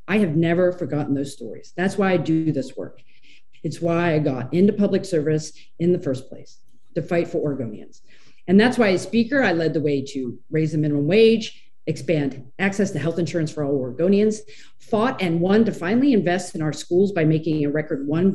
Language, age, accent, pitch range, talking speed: English, 40-59, American, 145-195 Hz, 205 wpm